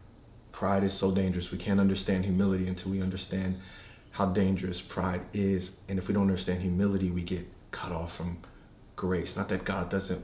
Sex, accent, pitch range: male, American, 95-115 Hz